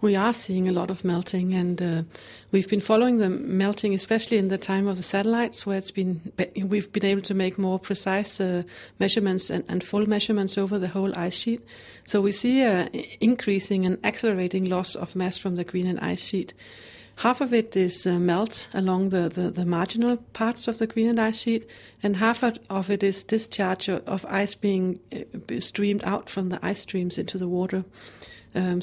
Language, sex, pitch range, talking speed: English, female, 185-215 Hz, 195 wpm